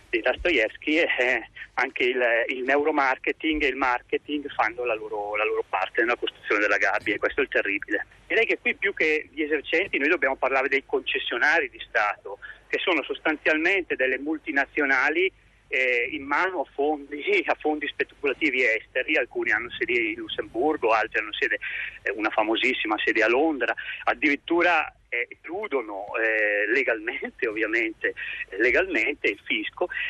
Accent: native